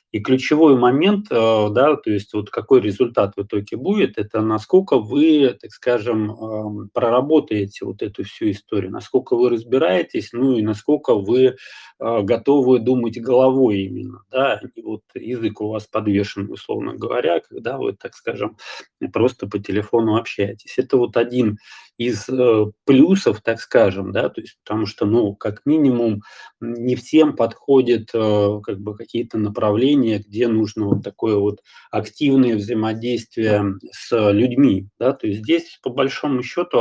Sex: male